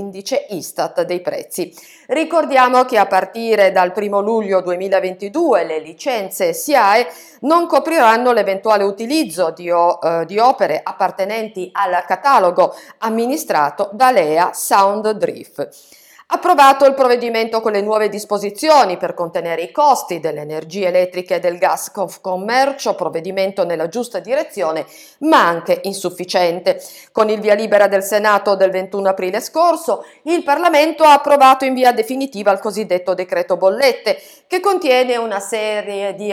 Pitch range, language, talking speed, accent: 185-270 Hz, Italian, 135 wpm, native